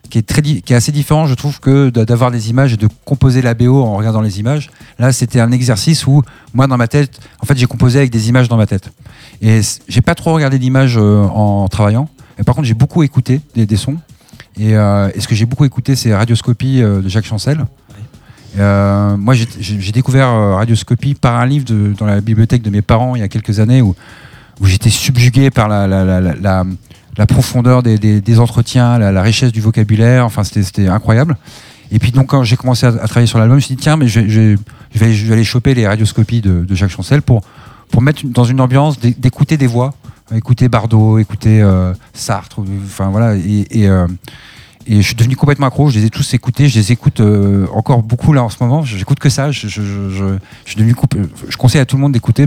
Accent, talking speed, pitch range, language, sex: French, 230 wpm, 105-130 Hz, French, male